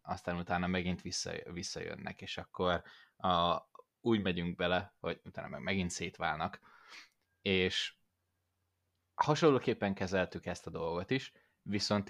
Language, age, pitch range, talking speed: Hungarian, 20-39, 85-105 Hz, 115 wpm